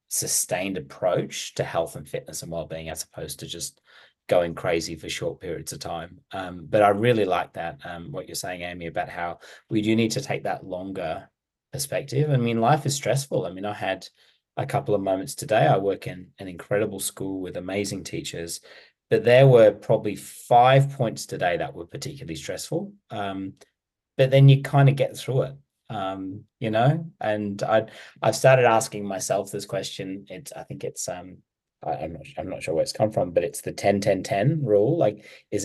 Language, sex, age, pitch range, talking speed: English, male, 30-49, 90-135 Hz, 195 wpm